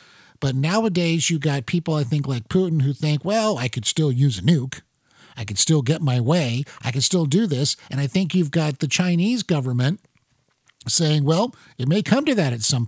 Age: 50-69